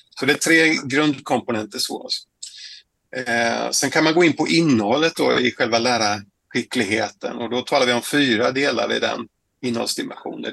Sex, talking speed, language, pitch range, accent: male, 160 wpm, Swedish, 115-135 Hz, native